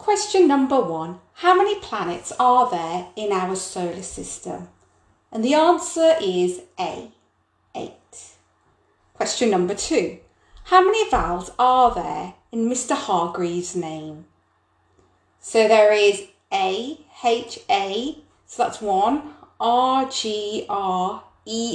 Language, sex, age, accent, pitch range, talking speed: English, female, 30-49, British, 200-295 Hz, 120 wpm